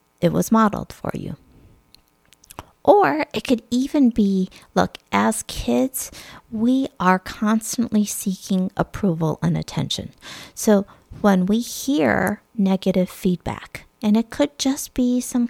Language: English